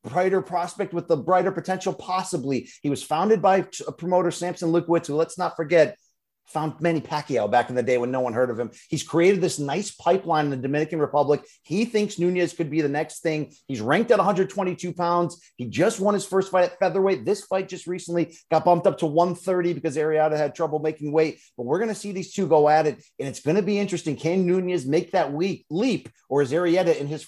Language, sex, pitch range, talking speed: English, male, 150-185 Hz, 225 wpm